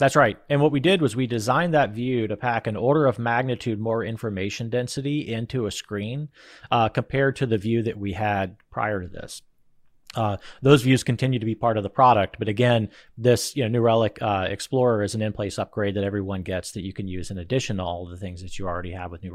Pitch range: 100-125 Hz